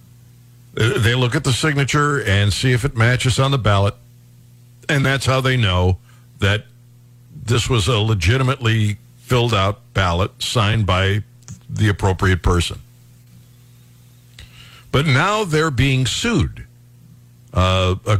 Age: 60-79